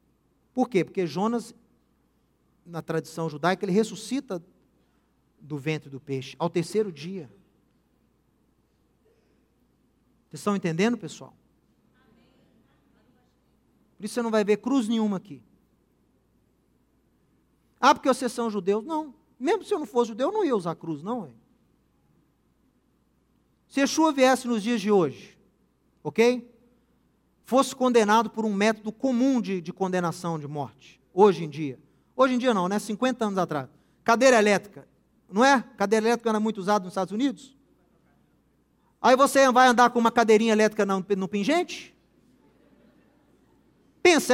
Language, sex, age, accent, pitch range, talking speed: Portuguese, male, 40-59, Brazilian, 190-275 Hz, 140 wpm